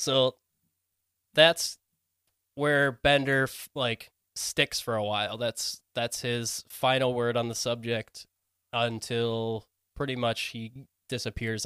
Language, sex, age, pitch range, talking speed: English, male, 10-29, 105-130 Hz, 115 wpm